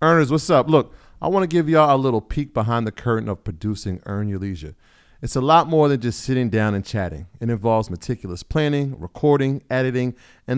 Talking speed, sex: 215 wpm, male